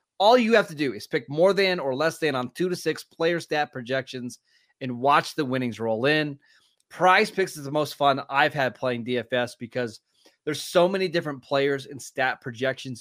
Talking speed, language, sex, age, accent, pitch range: 205 wpm, English, male, 20-39, American, 135-175 Hz